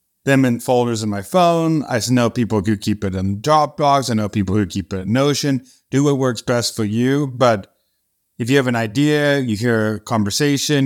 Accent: American